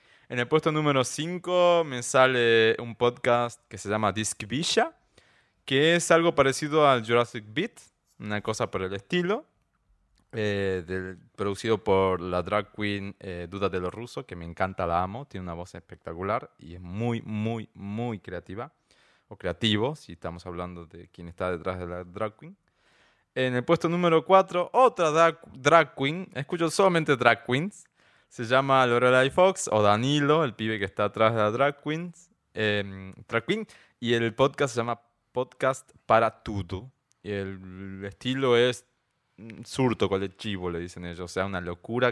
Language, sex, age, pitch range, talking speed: Spanish, male, 20-39, 95-130 Hz, 170 wpm